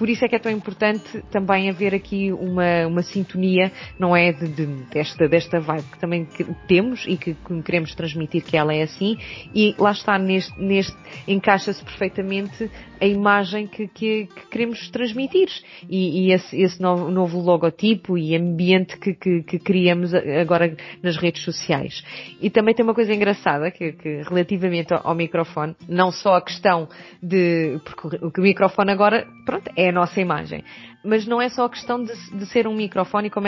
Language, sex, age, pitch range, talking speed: Portuguese, female, 20-39, 175-220 Hz, 170 wpm